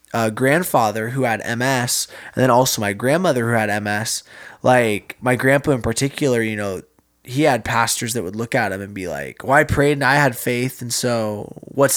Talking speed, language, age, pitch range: 205 wpm, English, 20-39, 120-140 Hz